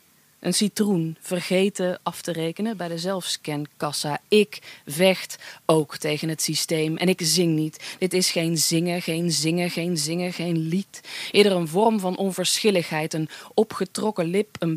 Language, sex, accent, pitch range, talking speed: Dutch, female, Dutch, 160-190 Hz, 155 wpm